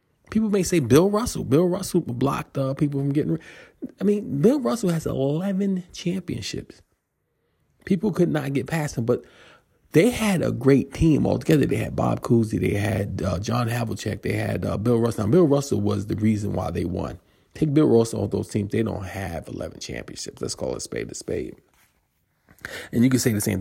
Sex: male